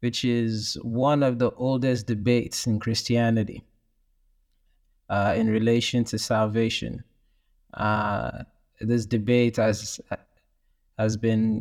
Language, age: English, 20-39